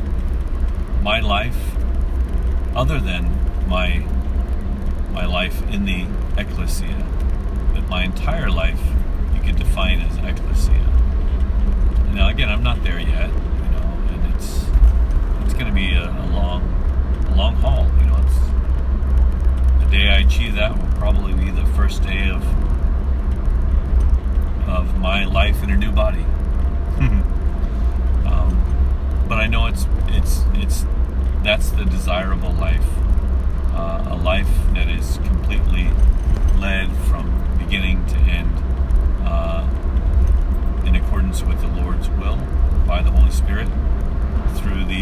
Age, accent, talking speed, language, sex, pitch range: 40-59, American, 125 wpm, English, male, 65-70 Hz